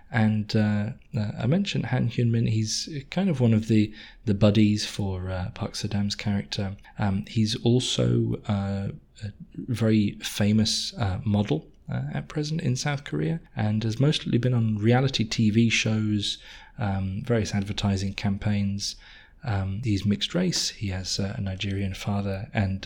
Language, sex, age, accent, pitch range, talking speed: English, male, 20-39, British, 100-115 Hz, 150 wpm